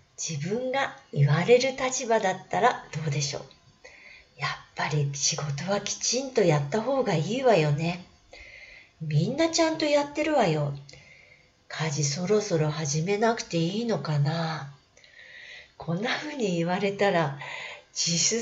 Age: 40-59